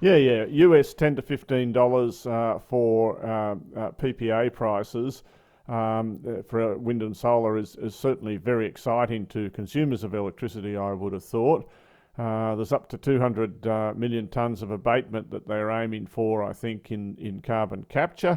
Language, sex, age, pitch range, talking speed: English, male, 50-69, 105-120 Hz, 175 wpm